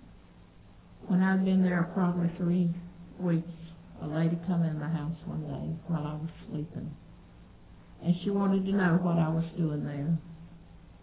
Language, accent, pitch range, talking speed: English, American, 160-175 Hz, 160 wpm